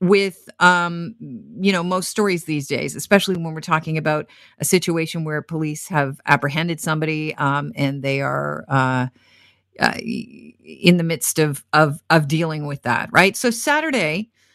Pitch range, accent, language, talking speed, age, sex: 155-200 Hz, American, English, 155 wpm, 40-59, female